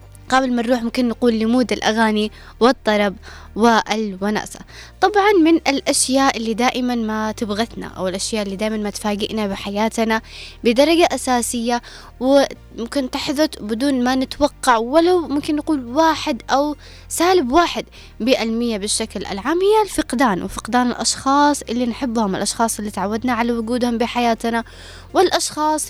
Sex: female